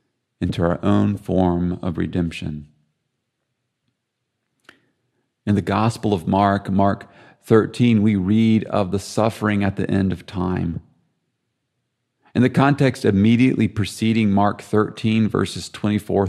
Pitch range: 100-115 Hz